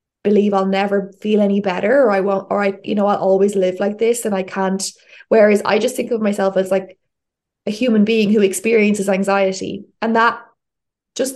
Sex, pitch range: female, 190-220 Hz